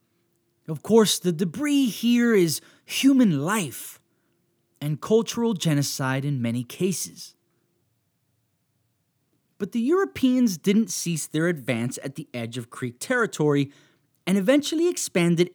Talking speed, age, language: 115 wpm, 30-49, English